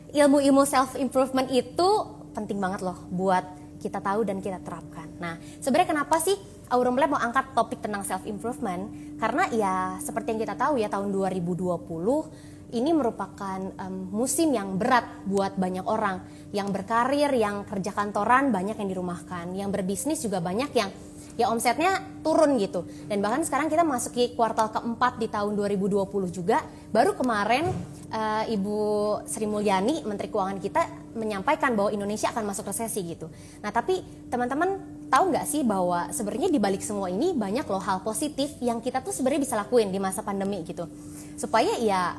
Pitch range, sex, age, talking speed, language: 190-250 Hz, female, 20-39, 165 wpm, Indonesian